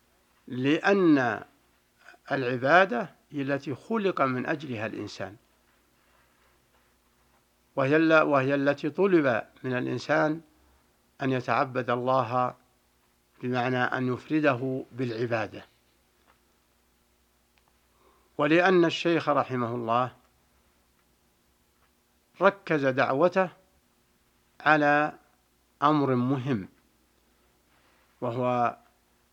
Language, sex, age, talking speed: Arabic, male, 60-79, 65 wpm